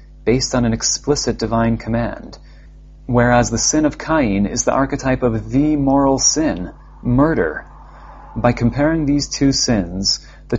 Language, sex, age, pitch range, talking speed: English, male, 30-49, 110-135 Hz, 140 wpm